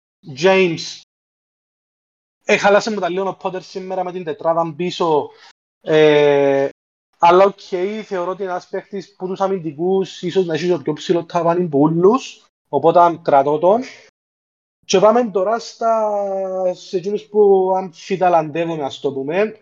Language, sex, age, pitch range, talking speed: Greek, male, 30-49, 150-190 Hz, 130 wpm